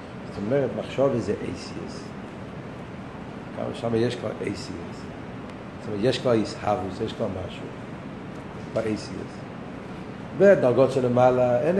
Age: 60-79